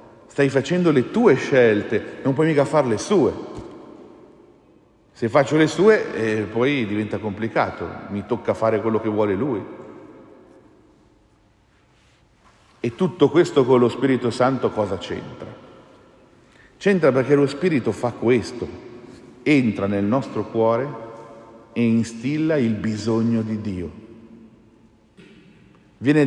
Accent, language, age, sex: native, Italian, 50-69, male